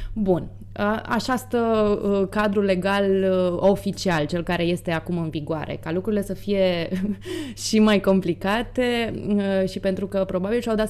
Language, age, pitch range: Romanian, 20-39, 175-220 Hz